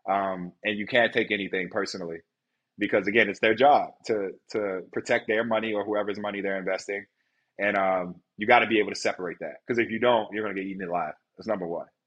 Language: English